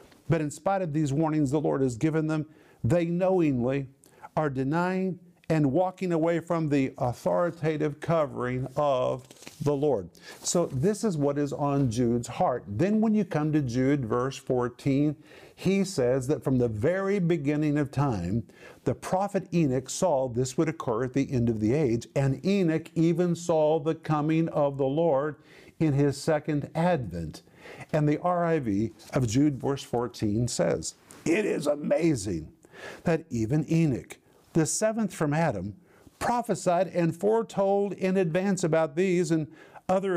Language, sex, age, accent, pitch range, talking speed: English, male, 50-69, American, 140-180 Hz, 155 wpm